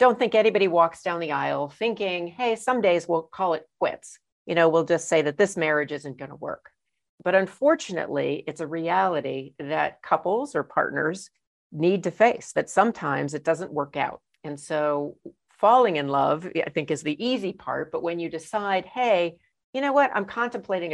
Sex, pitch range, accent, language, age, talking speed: female, 150-190 Hz, American, English, 50-69, 185 wpm